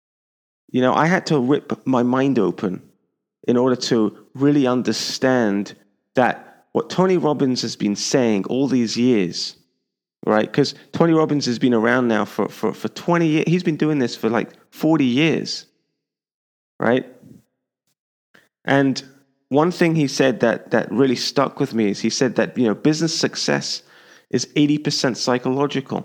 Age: 30-49